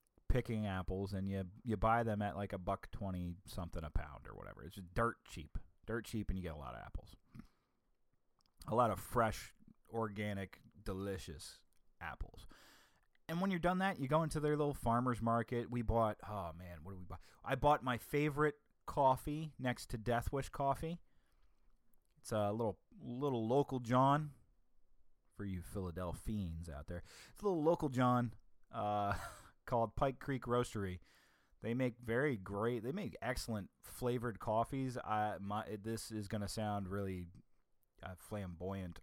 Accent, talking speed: American, 160 wpm